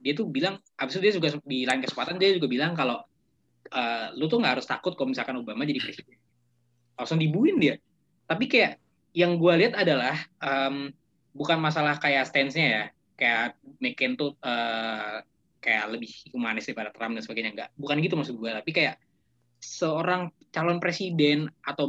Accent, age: native, 20-39